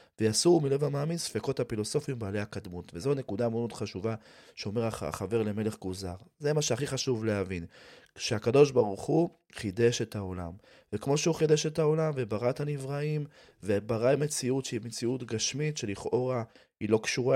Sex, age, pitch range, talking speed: male, 30-49, 105-130 Hz, 150 wpm